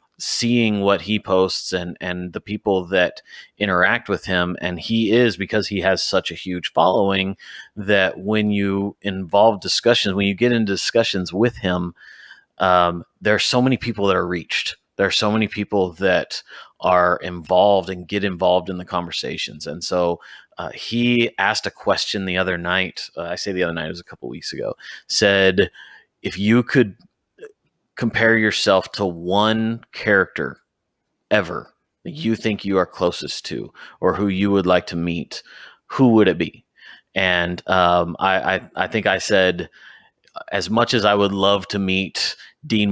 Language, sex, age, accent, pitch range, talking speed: English, male, 30-49, American, 90-105 Hz, 175 wpm